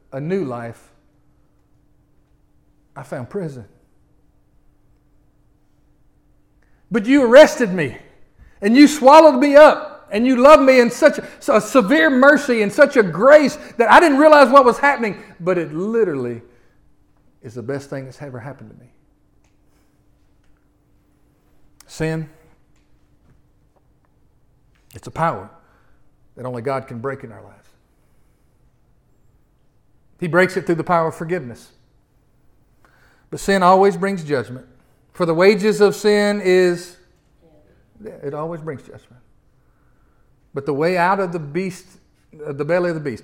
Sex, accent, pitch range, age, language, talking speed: male, American, 135-205 Hz, 50-69, English, 130 wpm